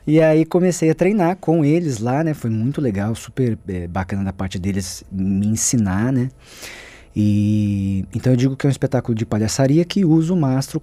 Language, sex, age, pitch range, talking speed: Portuguese, male, 20-39, 100-145 Hz, 190 wpm